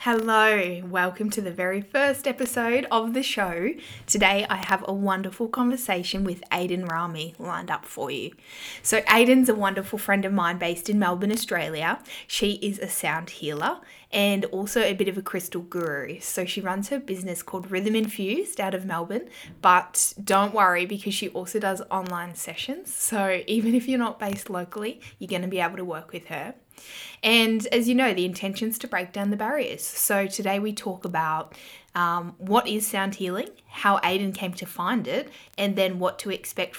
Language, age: English, 10-29